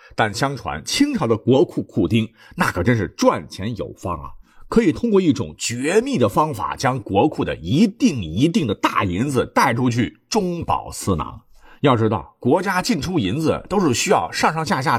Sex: male